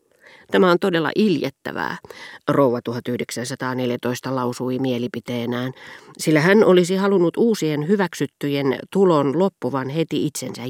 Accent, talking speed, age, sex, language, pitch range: native, 100 wpm, 40-59, female, Finnish, 125-175 Hz